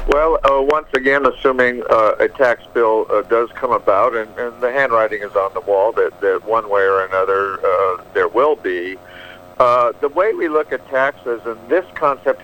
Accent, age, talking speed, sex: American, 60-79, 200 wpm, male